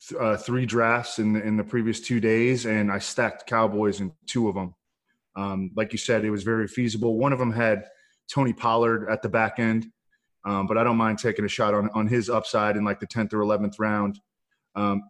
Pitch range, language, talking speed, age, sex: 110-135 Hz, English, 225 wpm, 20-39, male